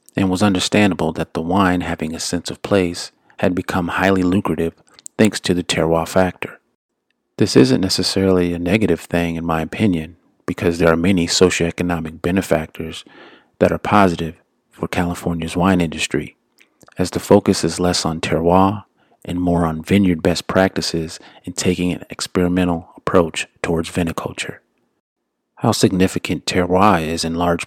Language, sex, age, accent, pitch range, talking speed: English, male, 40-59, American, 85-95 Hz, 150 wpm